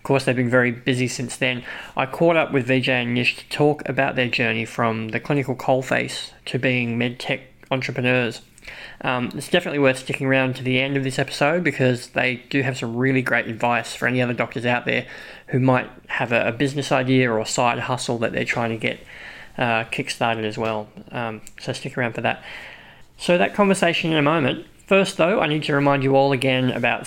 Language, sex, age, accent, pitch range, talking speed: English, male, 20-39, Australian, 120-135 Hz, 215 wpm